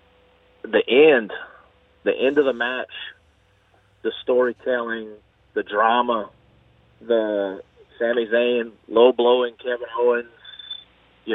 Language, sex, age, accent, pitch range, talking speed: English, male, 30-49, American, 115-140 Hz, 95 wpm